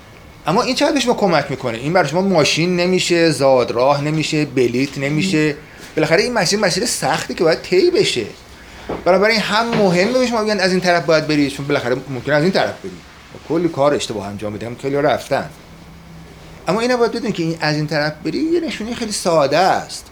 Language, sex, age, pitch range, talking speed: Persian, male, 30-49, 130-185 Hz, 195 wpm